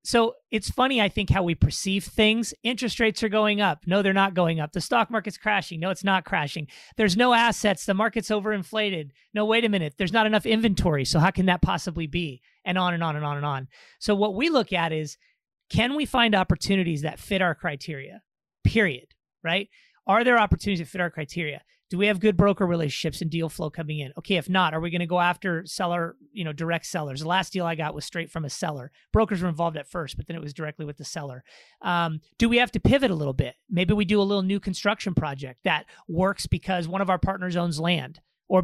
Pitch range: 165-210 Hz